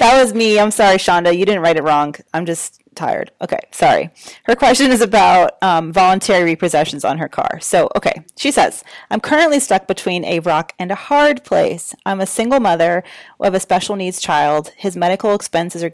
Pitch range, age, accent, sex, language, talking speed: 175-215 Hz, 30-49, American, female, English, 200 wpm